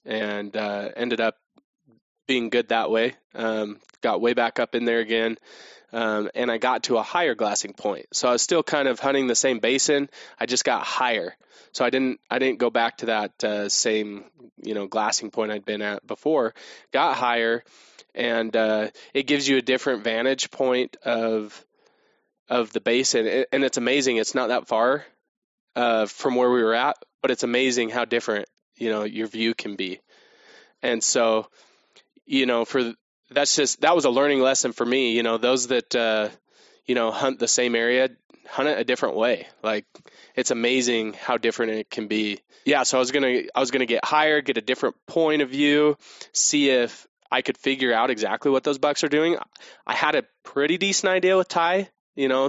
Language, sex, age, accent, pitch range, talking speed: English, male, 20-39, American, 115-140 Hz, 200 wpm